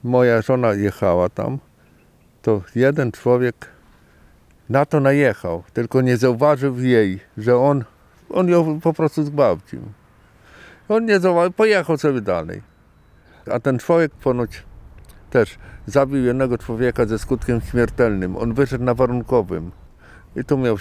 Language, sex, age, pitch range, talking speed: Polish, male, 50-69, 95-135 Hz, 130 wpm